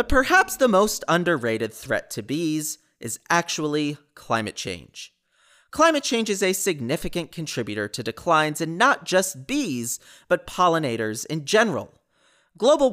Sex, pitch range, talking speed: male, 125-205 Hz, 135 wpm